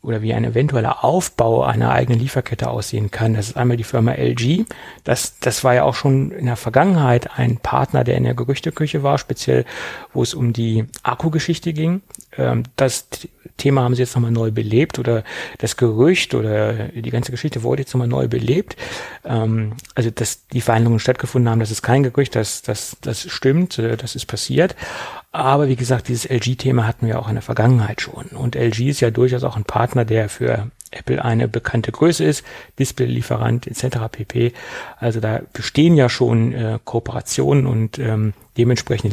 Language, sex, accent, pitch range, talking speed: German, male, German, 115-135 Hz, 180 wpm